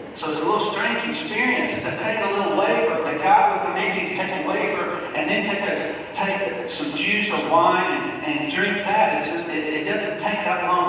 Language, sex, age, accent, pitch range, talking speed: English, male, 50-69, American, 160-230 Hz, 220 wpm